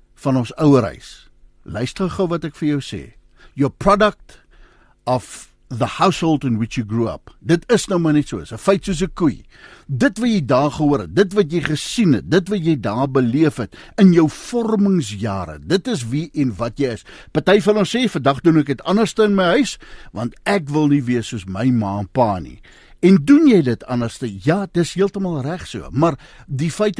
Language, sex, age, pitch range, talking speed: English, male, 60-79, 125-175 Hz, 205 wpm